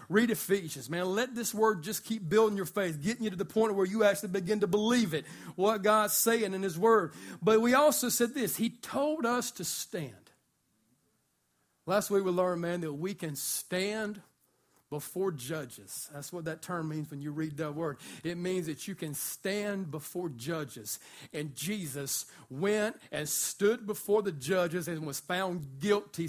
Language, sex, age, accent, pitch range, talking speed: English, male, 40-59, American, 170-225 Hz, 185 wpm